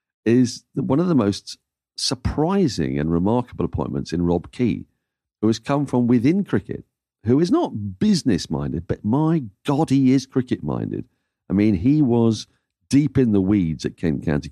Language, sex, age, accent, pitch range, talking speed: English, male, 50-69, British, 80-120 Hz, 160 wpm